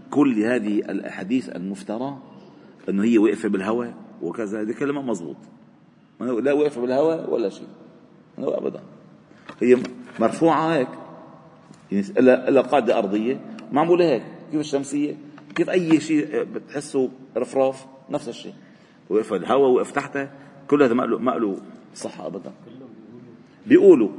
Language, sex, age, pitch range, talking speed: Arabic, male, 40-59, 130-175 Hz, 115 wpm